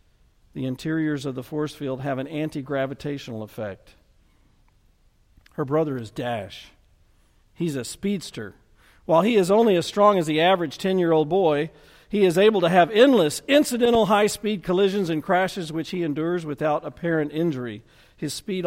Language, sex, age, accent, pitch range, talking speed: English, male, 50-69, American, 125-170 Hz, 150 wpm